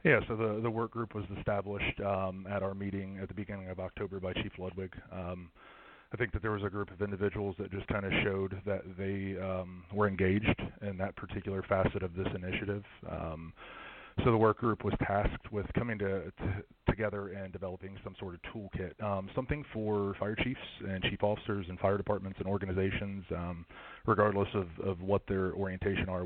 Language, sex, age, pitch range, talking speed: English, male, 30-49, 95-100 Hz, 195 wpm